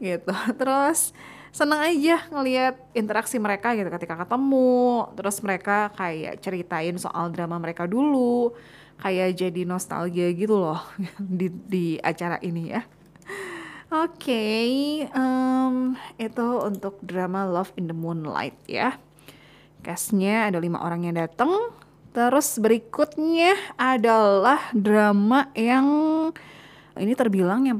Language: Indonesian